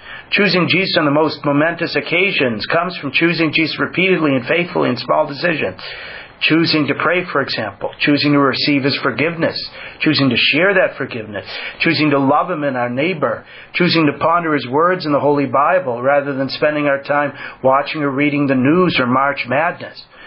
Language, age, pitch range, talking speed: English, 40-59, 130-160 Hz, 180 wpm